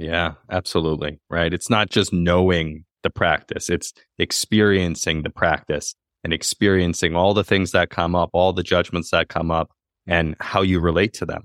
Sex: male